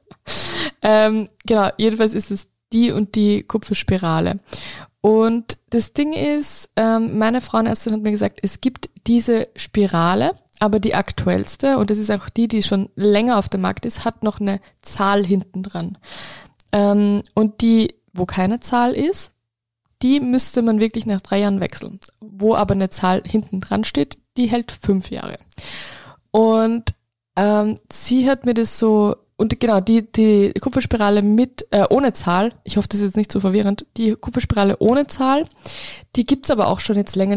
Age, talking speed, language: 20-39, 170 wpm, German